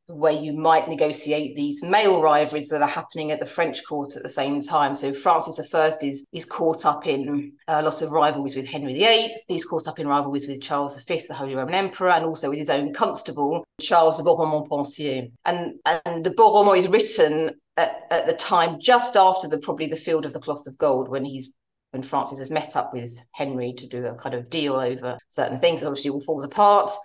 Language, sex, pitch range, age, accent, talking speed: English, female, 140-170 Hz, 40-59, British, 220 wpm